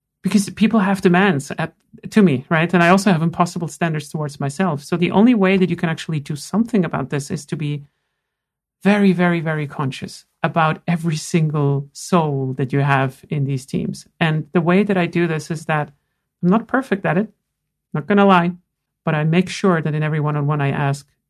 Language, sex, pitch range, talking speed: English, male, 150-185 Hz, 205 wpm